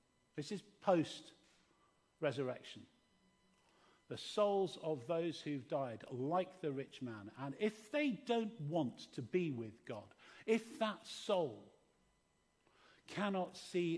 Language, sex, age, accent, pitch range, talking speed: English, male, 50-69, British, 140-195 Hz, 120 wpm